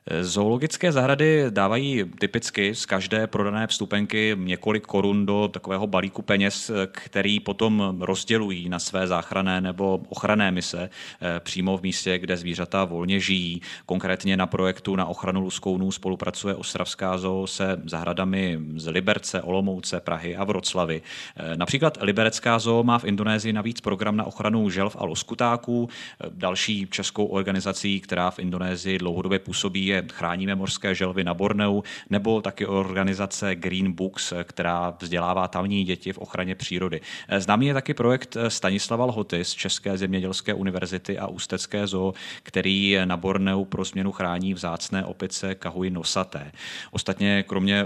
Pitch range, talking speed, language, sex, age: 90-100 Hz, 140 wpm, Czech, male, 30-49